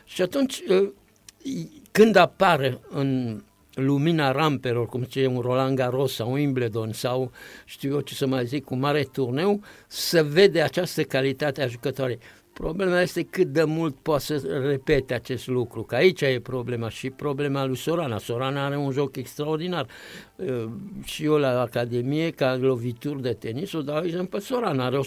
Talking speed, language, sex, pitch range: 160 wpm, Romanian, male, 130-180 Hz